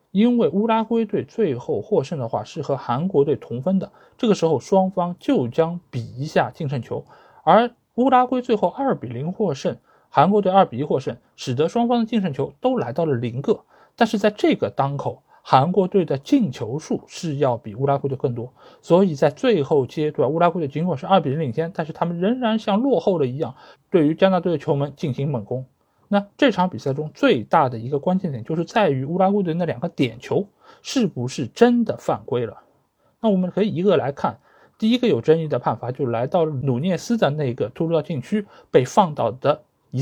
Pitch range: 145-215 Hz